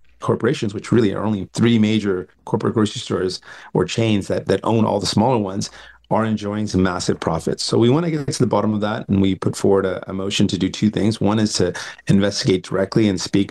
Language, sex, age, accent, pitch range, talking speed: English, male, 30-49, American, 95-110 Hz, 230 wpm